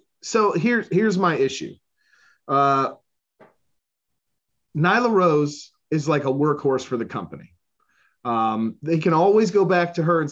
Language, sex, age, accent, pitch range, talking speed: English, male, 30-49, American, 120-175 Hz, 135 wpm